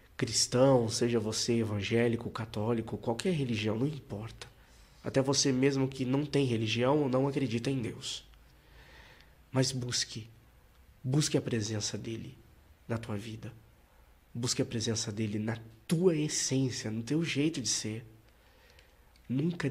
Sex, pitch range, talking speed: male, 105-125 Hz, 130 wpm